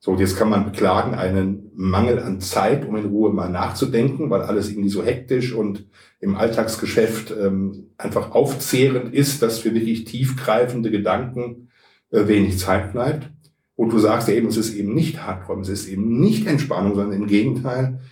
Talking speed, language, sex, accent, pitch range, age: 175 wpm, German, male, German, 100-125 Hz, 50-69